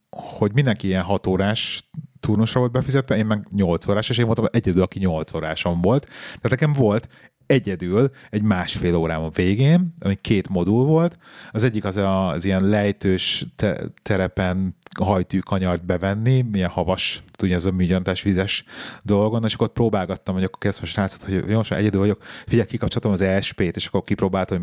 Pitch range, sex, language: 95-125 Hz, male, Hungarian